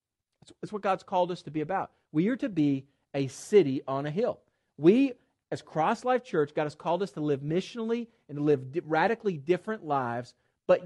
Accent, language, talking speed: American, English, 200 wpm